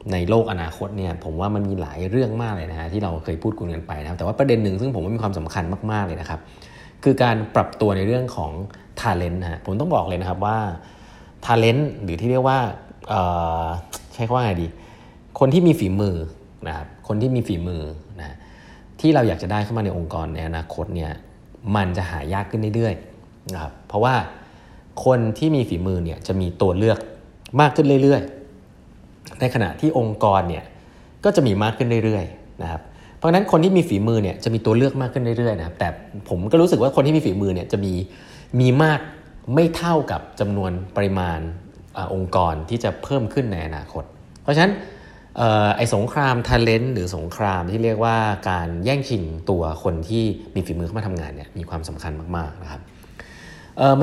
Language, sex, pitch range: Thai, male, 85-120 Hz